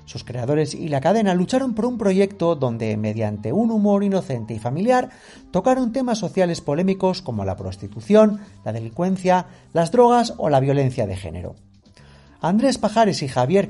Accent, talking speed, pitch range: Spanish, 160 wpm, 125-205 Hz